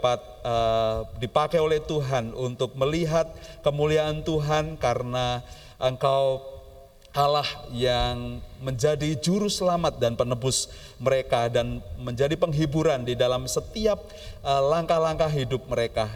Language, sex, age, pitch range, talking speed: Indonesian, male, 30-49, 120-150 Hz, 100 wpm